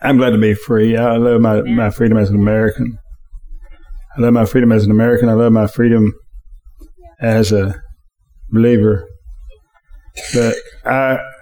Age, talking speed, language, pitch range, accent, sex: 20-39, 150 wpm, English, 80-120 Hz, American, male